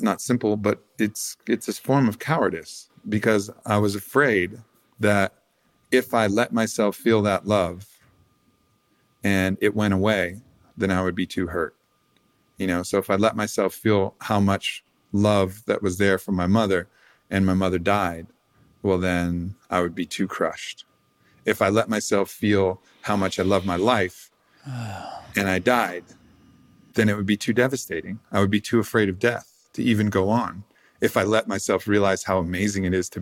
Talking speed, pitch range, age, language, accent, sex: 180 wpm, 95-110 Hz, 40-59, English, American, male